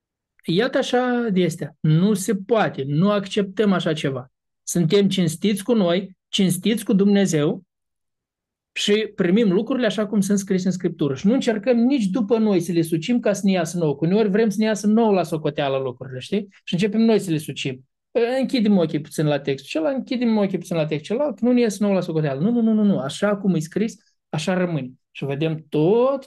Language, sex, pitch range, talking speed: Romanian, male, 150-210 Hz, 200 wpm